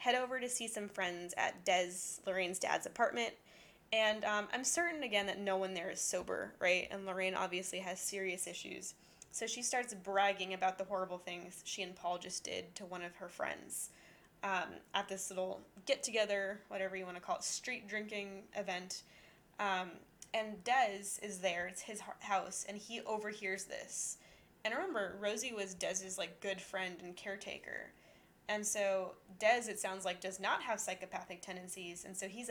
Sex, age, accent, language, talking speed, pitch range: female, 10-29, American, English, 175 wpm, 185-210 Hz